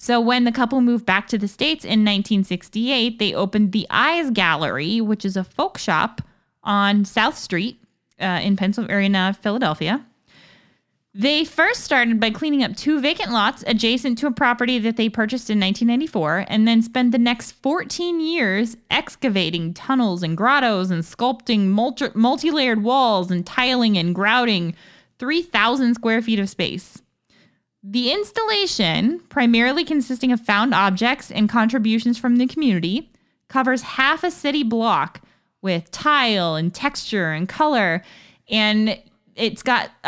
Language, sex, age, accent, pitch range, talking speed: English, female, 20-39, American, 205-260 Hz, 145 wpm